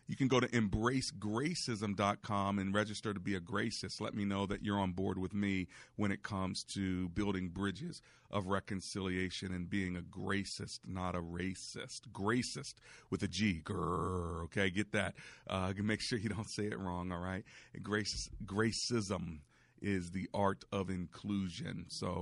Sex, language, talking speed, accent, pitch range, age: male, English, 160 wpm, American, 95-115 Hz, 40-59